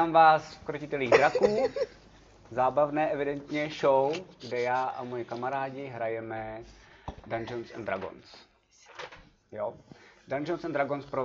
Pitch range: 105-125 Hz